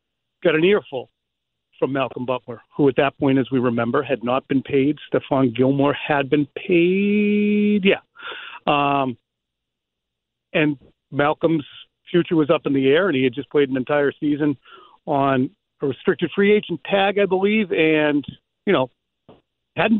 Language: English